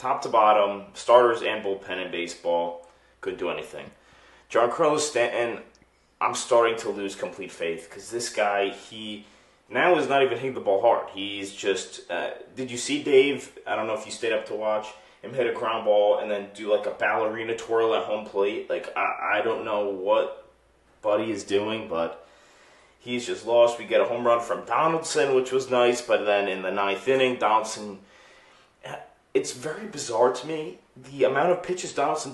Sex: male